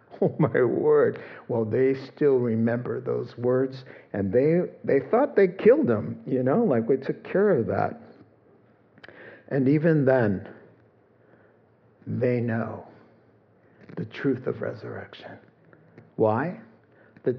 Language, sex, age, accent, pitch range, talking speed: English, male, 60-79, American, 120-160 Hz, 120 wpm